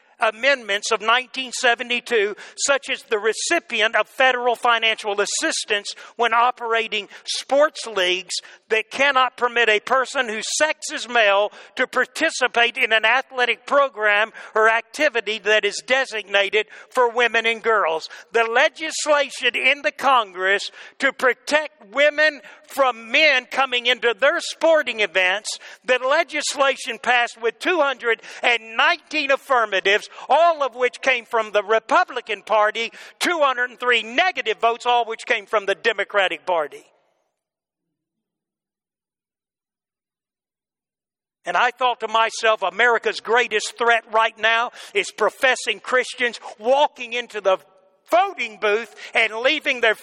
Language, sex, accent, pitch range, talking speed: English, male, American, 215-275 Hz, 120 wpm